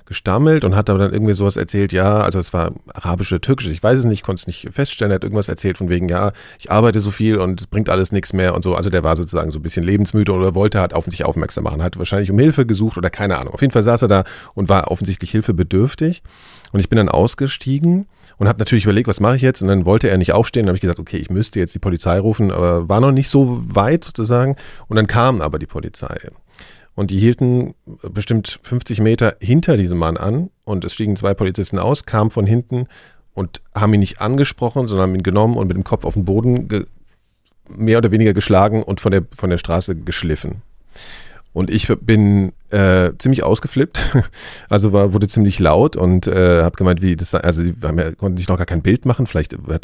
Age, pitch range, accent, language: 40-59, 90-110 Hz, German, German